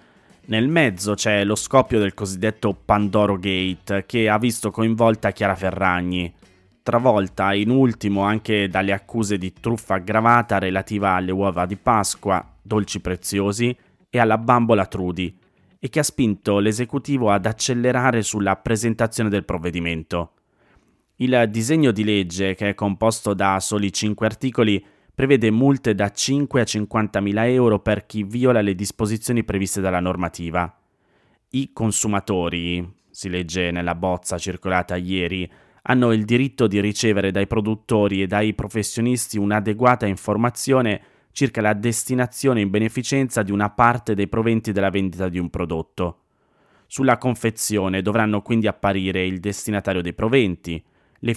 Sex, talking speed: male, 135 wpm